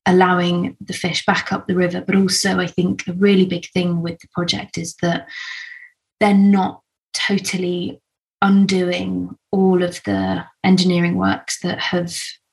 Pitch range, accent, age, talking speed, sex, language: 175-195 Hz, British, 20-39, 150 wpm, female, English